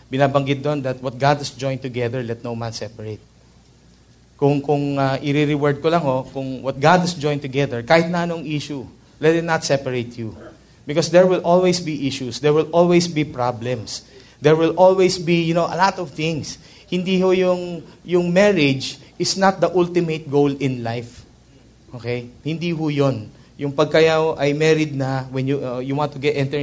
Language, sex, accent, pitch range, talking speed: English, male, Filipino, 130-160 Hz, 190 wpm